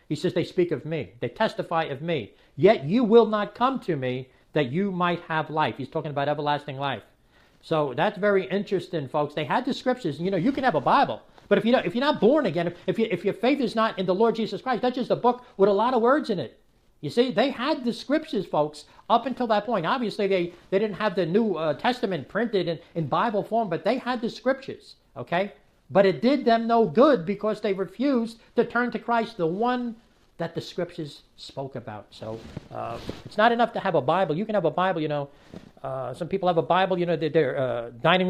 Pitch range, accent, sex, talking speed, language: 160-215 Hz, American, male, 240 wpm, English